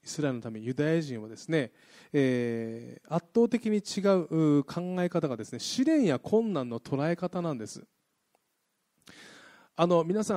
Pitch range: 135-200 Hz